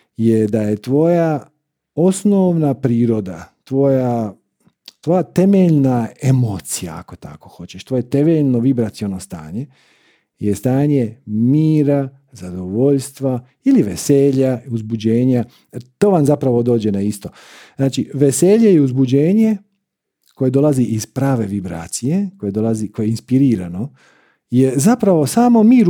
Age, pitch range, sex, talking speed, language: 50-69, 115-175 Hz, male, 110 wpm, Croatian